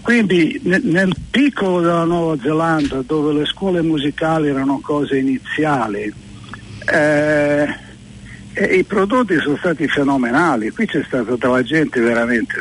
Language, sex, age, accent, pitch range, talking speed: Italian, male, 60-79, native, 120-155 Hz, 130 wpm